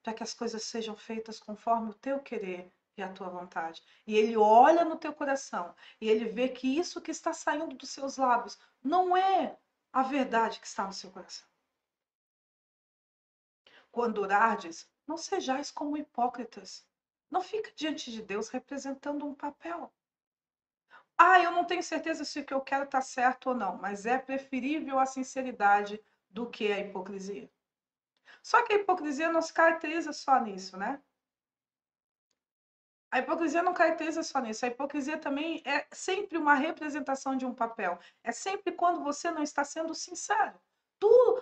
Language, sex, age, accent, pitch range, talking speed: Portuguese, female, 40-59, Brazilian, 235-325 Hz, 165 wpm